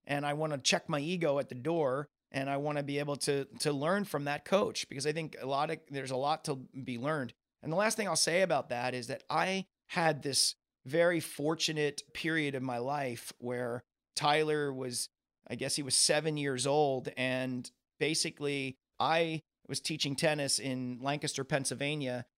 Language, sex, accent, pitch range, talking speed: English, male, American, 135-155 Hz, 195 wpm